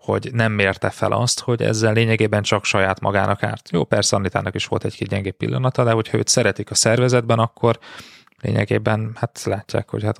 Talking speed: 195 wpm